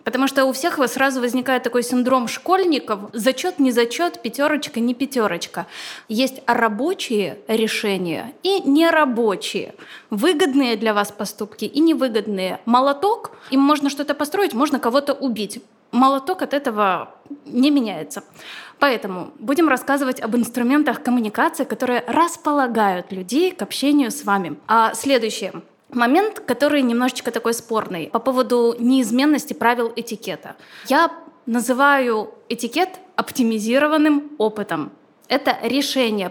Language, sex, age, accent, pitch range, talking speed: Russian, female, 20-39, native, 225-290 Hz, 120 wpm